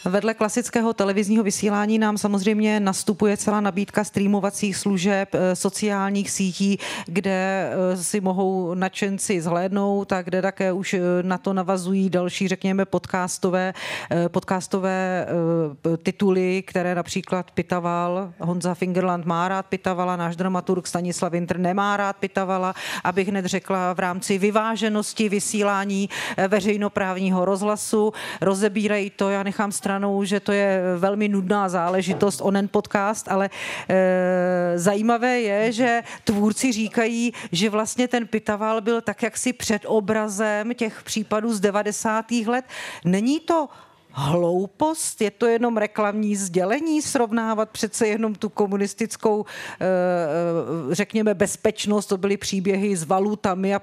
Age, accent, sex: 40-59, native, female